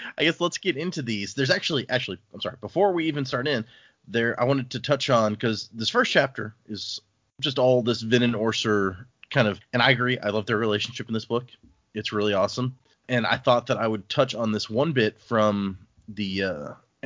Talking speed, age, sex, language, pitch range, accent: 220 wpm, 30-49, male, English, 105-130 Hz, American